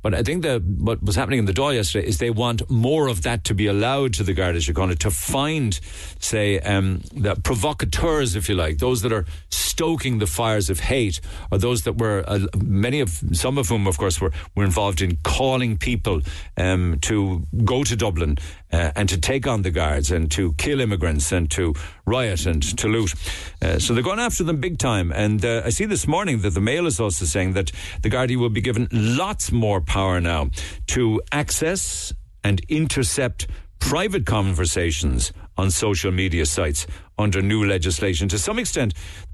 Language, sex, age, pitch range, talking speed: English, male, 60-79, 85-115 Hz, 195 wpm